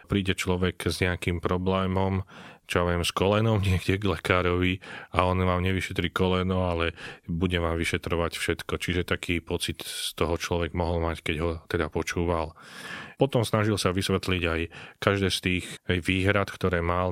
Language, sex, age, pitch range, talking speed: Slovak, male, 30-49, 85-95 Hz, 160 wpm